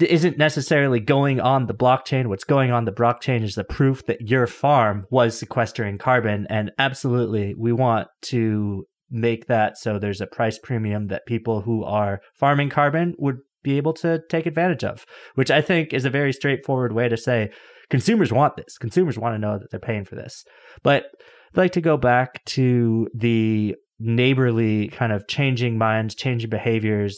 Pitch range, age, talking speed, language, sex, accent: 110-140 Hz, 20-39, 180 wpm, English, male, American